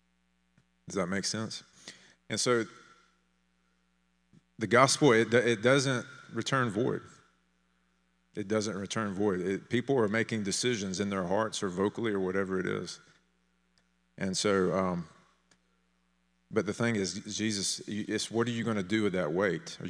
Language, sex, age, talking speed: English, male, 30-49, 150 wpm